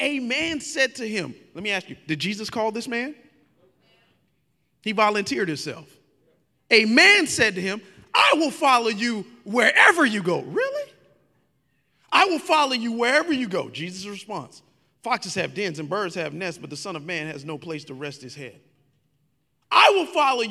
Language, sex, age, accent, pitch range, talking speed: English, male, 40-59, American, 185-270 Hz, 180 wpm